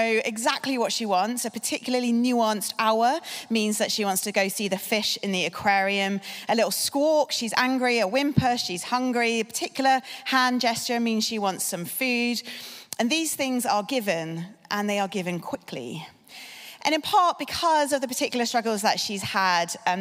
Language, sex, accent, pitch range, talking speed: English, female, British, 200-260 Hz, 180 wpm